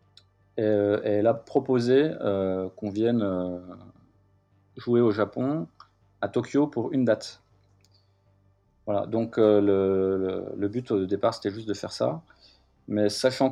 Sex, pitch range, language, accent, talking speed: male, 95-115 Hz, French, French, 140 wpm